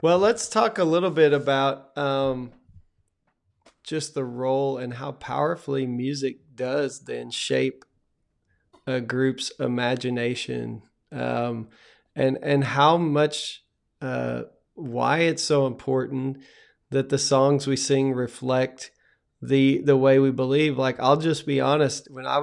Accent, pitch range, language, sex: American, 130-145 Hz, English, male